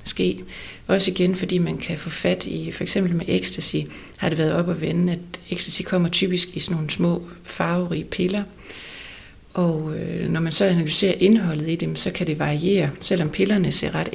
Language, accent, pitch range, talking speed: Danish, native, 155-185 Hz, 195 wpm